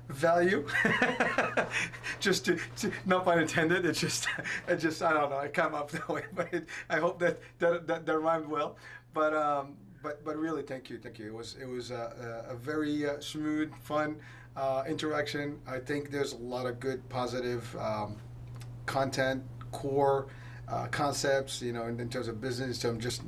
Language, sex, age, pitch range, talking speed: English, male, 30-49, 120-145 Hz, 185 wpm